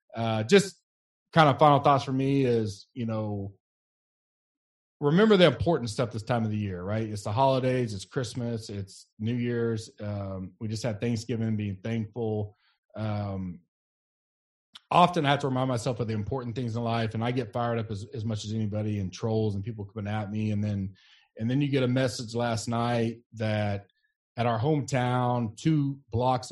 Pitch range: 105-125 Hz